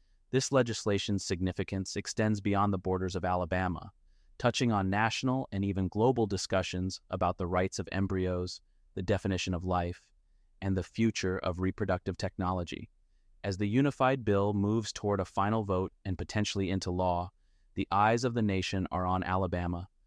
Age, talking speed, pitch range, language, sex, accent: 30-49, 155 wpm, 90-105 Hz, English, male, American